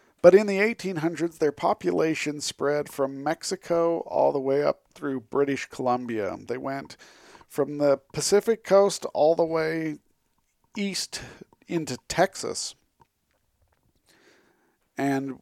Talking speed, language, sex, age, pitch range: 115 wpm, English, male, 50-69, 120-150 Hz